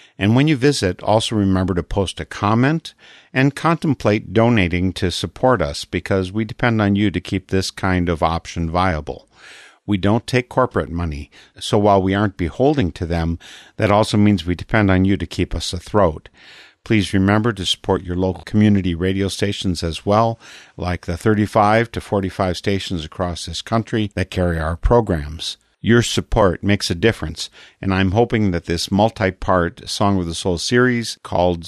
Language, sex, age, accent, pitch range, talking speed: English, male, 50-69, American, 85-105 Hz, 175 wpm